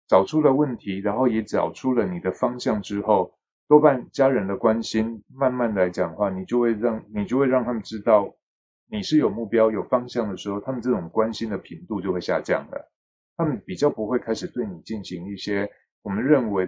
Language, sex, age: Chinese, male, 20-39